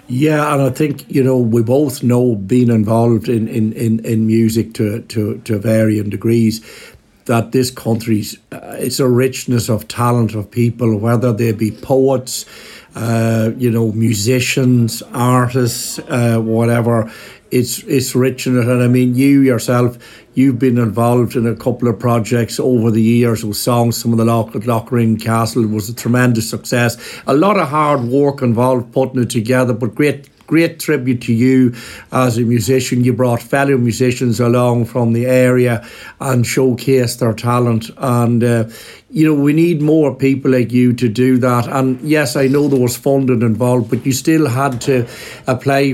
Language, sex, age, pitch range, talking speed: English, male, 60-79, 115-130 Hz, 175 wpm